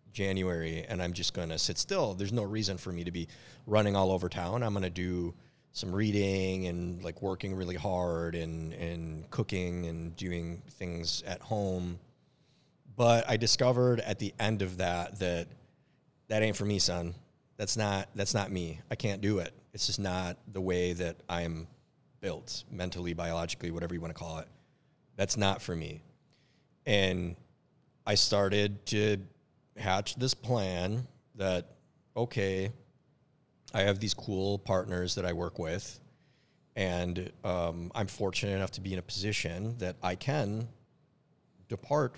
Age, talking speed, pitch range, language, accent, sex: 30-49, 160 wpm, 85-115 Hz, English, American, male